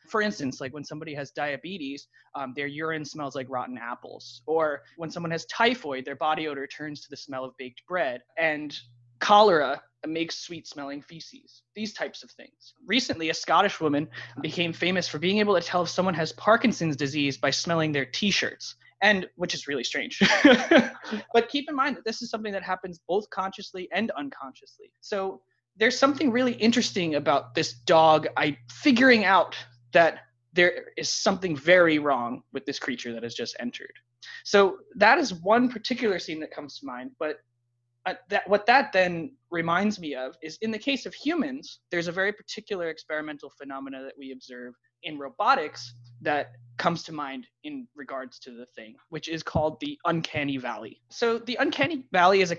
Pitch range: 140-205 Hz